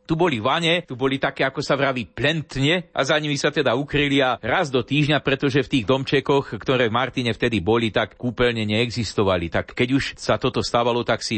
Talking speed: 210 wpm